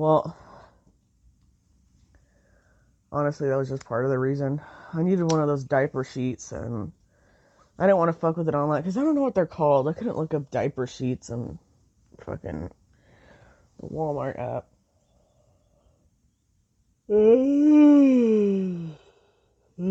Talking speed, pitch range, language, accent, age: 130 wpm, 125-165 Hz, English, American, 30-49